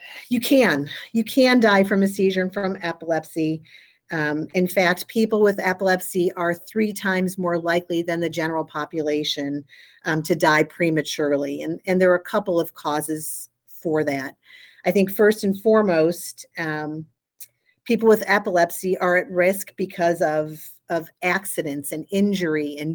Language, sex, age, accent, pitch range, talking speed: English, female, 40-59, American, 155-195 Hz, 155 wpm